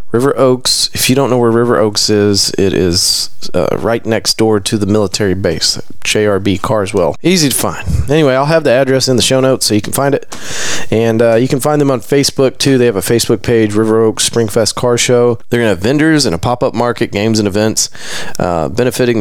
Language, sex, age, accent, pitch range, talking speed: English, male, 30-49, American, 105-130 Hz, 220 wpm